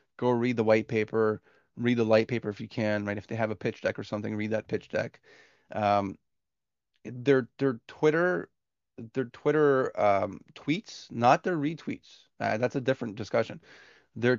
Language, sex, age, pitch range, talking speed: English, male, 30-49, 110-125 Hz, 175 wpm